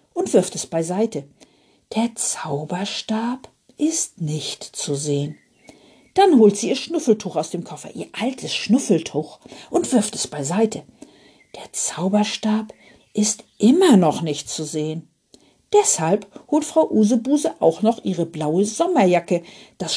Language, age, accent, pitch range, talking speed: German, 50-69, German, 165-265 Hz, 130 wpm